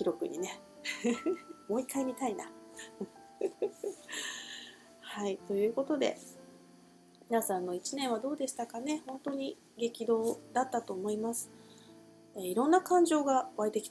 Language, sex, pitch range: Japanese, female, 185-275 Hz